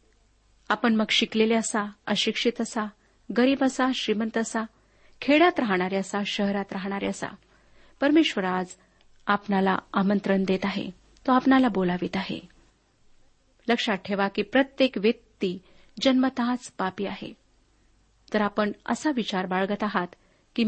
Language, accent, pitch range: Marathi, native, 195-260 Hz